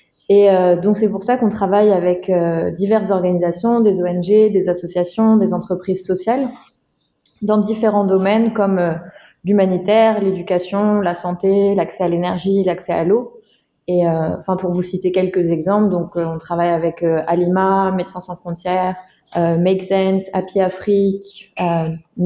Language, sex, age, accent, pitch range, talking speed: French, female, 20-39, French, 175-200 Hz, 155 wpm